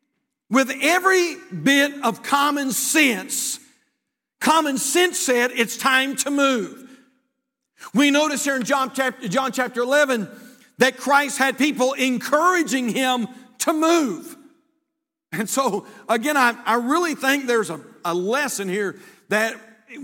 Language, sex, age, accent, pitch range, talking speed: English, male, 50-69, American, 240-305 Hz, 125 wpm